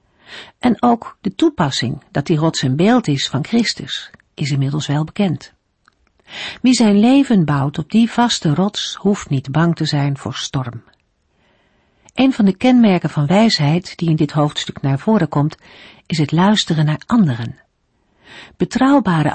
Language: Dutch